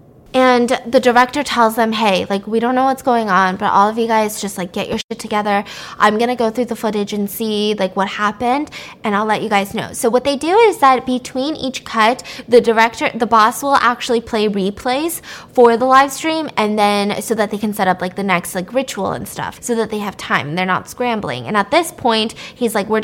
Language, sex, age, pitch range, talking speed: English, female, 20-39, 200-240 Hz, 240 wpm